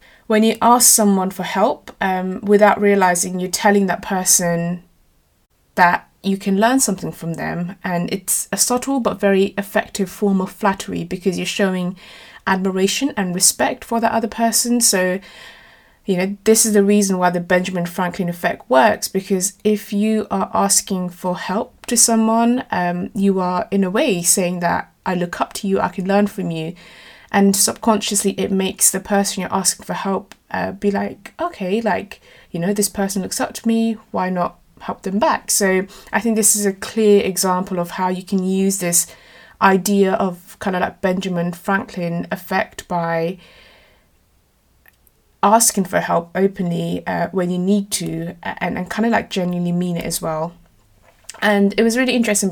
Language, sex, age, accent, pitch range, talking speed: English, female, 20-39, British, 180-210 Hz, 175 wpm